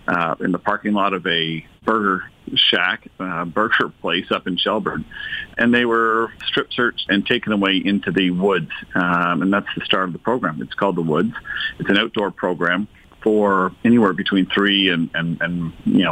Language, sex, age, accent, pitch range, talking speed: English, male, 50-69, American, 90-100 Hz, 185 wpm